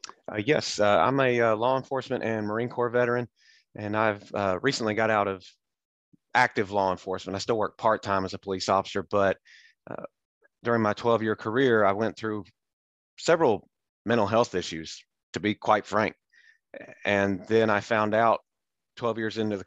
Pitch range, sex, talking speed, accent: 100-115 Hz, male, 175 wpm, American